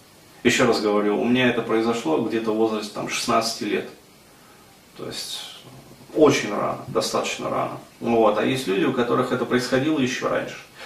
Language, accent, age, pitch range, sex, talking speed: Russian, native, 30-49, 110-125 Hz, male, 150 wpm